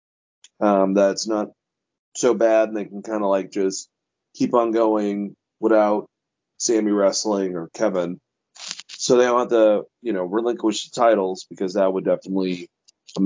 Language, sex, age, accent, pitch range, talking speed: English, male, 30-49, American, 100-125 Hz, 160 wpm